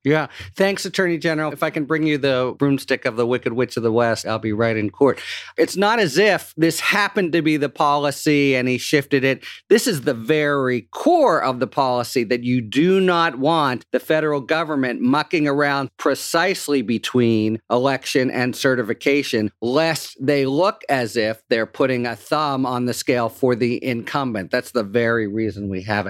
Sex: male